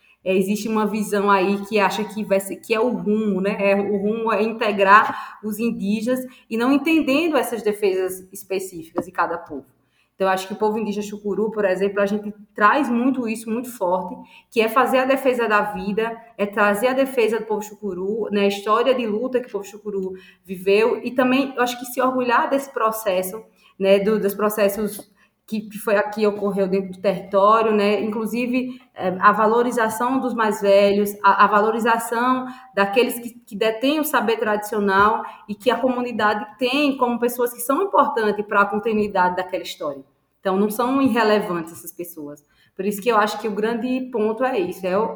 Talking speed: 185 wpm